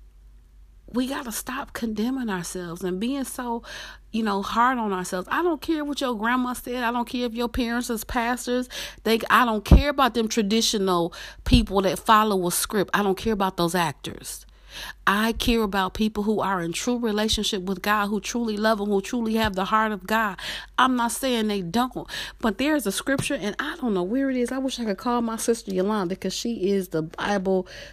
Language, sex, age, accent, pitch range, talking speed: English, female, 40-59, American, 185-240 Hz, 210 wpm